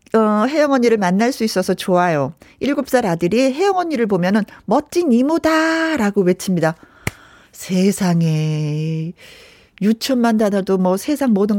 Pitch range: 185-270 Hz